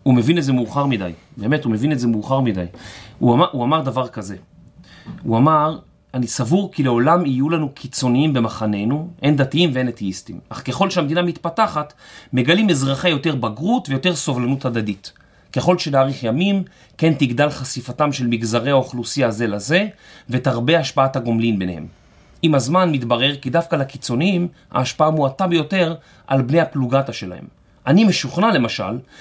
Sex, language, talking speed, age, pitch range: male, Hebrew, 155 wpm, 30-49, 125-165 Hz